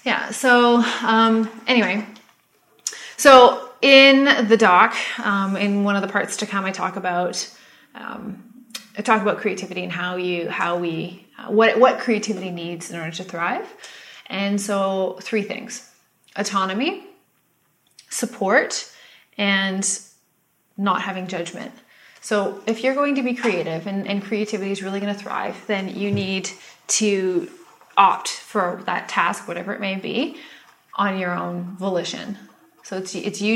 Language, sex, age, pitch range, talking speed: English, female, 20-39, 185-230 Hz, 150 wpm